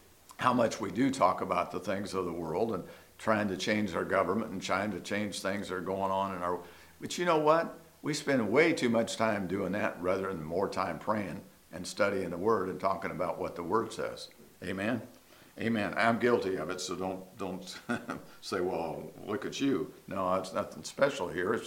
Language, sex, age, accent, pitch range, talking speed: English, male, 50-69, American, 90-115 Hz, 210 wpm